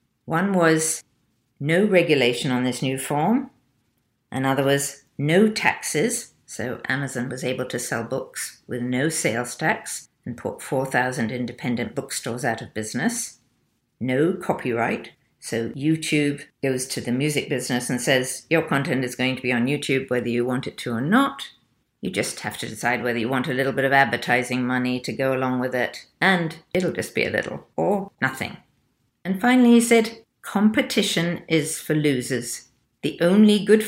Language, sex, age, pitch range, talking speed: English, female, 50-69, 125-170 Hz, 170 wpm